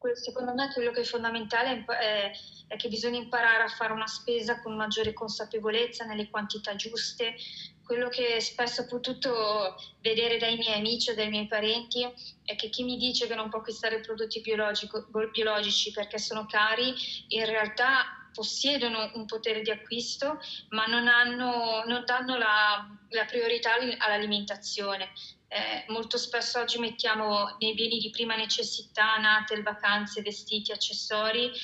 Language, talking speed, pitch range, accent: Italian, 145 wpm, 215-240 Hz, native